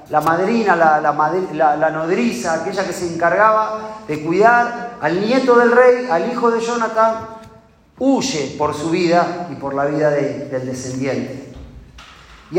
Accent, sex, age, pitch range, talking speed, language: Argentinian, male, 40-59, 175-240 Hz, 150 wpm, Spanish